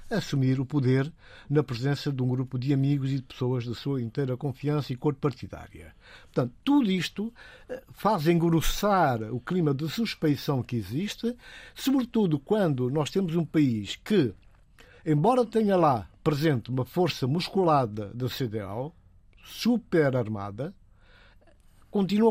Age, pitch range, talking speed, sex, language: 60-79, 130-190 Hz, 135 wpm, male, Portuguese